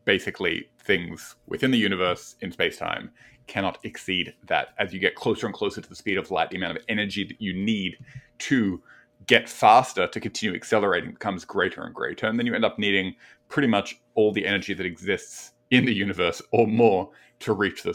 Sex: male